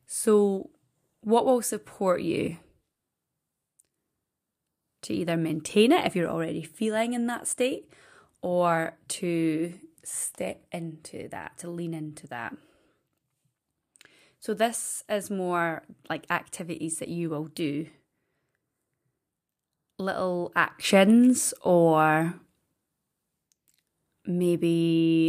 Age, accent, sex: 20-39, British, female